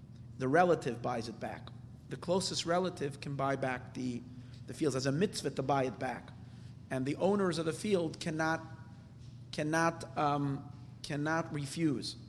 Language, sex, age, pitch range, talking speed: English, male, 40-59, 130-165 Hz, 155 wpm